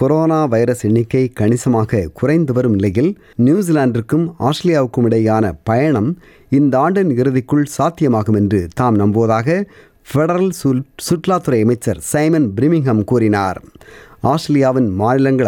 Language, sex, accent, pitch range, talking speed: Tamil, male, native, 110-150 Hz, 100 wpm